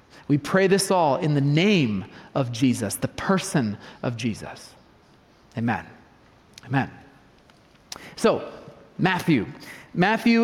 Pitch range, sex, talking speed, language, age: 155-210 Hz, male, 105 wpm, English, 30-49